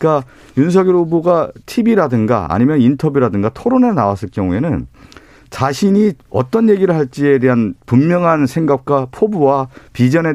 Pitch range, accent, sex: 115-165 Hz, native, male